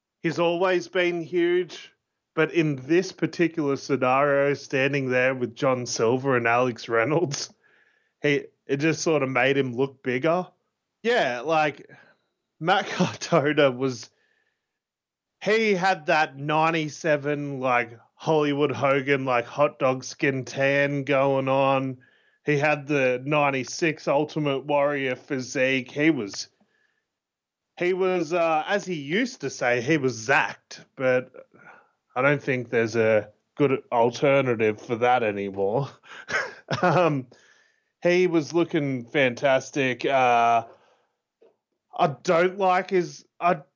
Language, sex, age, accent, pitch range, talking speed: English, male, 30-49, Australian, 130-180 Hz, 115 wpm